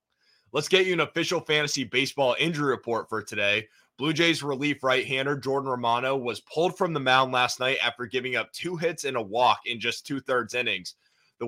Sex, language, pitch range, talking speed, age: male, English, 125-155 Hz, 195 wpm, 20-39